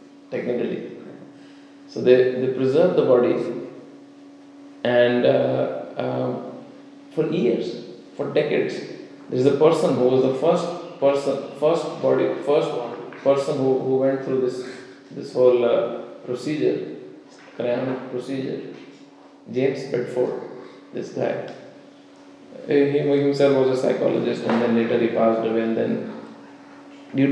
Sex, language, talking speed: male, English, 125 wpm